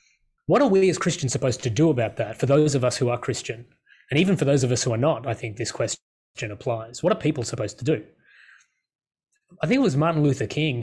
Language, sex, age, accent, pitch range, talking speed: English, male, 20-39, Australian, 120-160 Hz, 245 wpm